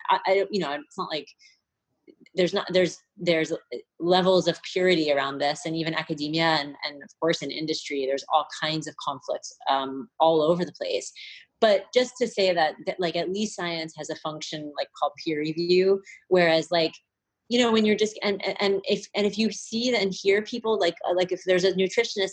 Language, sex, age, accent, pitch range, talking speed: English, female, 30-49, American, 165-215 Hz, 200 wpm